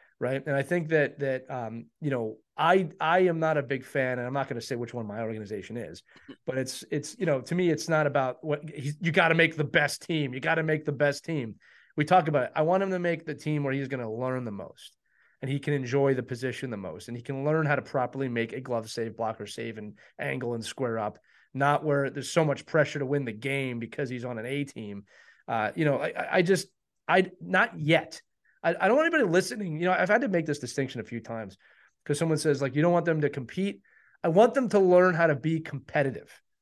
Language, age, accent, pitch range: English, 30-49, American, 130-175 Hz